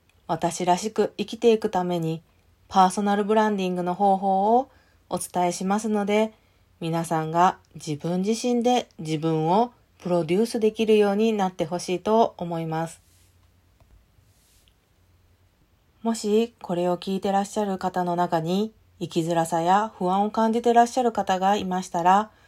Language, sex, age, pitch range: Japanese, female, 40-59, 165-215 Hz